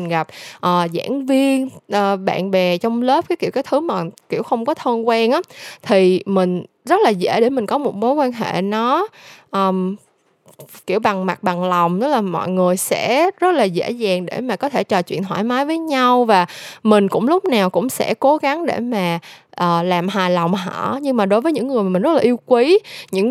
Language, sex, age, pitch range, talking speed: Vietnamese, female, 10-29, 185-255 Hz, 225 wpm